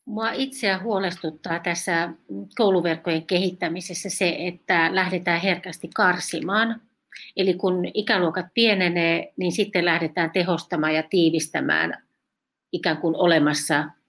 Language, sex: Finnish, female